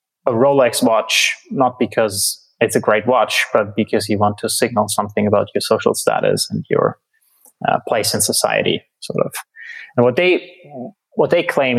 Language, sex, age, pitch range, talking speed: English, male, 20-39, 110-145 Hz, 175 wpm